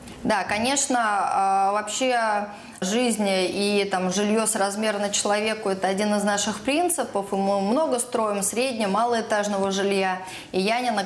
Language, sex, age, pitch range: Russian, female, 20-39, 195-225 Hz